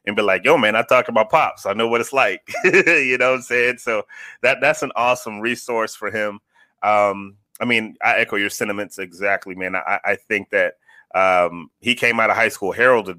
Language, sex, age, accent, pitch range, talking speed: English, male, 30-49, American, 100-120 Hz, 220 wpm